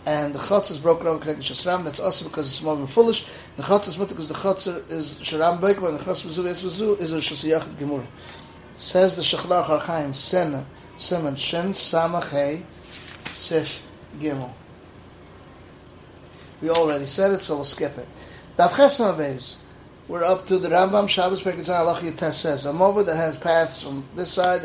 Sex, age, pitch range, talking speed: male, 30-49, 150-180 Hz, 170 wpm